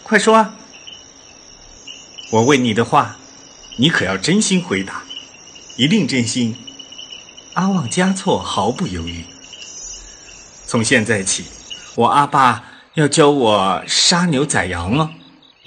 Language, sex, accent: Chinese, male, native